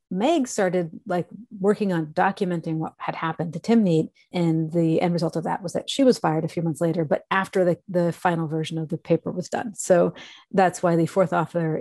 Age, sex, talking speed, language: 30-49, female, 225 wpm, English